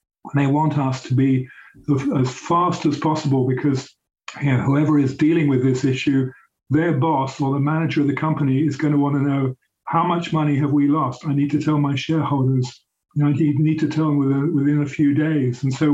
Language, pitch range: English, 135-155 Hz